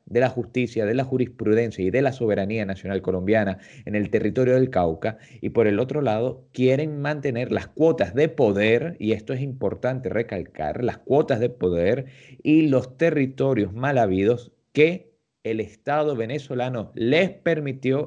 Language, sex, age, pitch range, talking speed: Spanish, male, 30-49, 100-140 Hz, 160 wpm